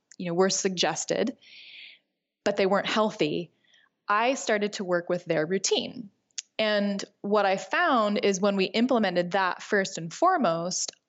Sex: female